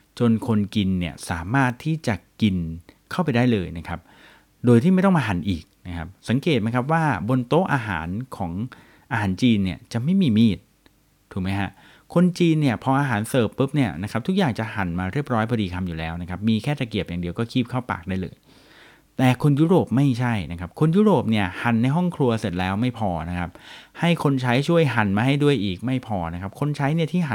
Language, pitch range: Thai, 95-135 Hz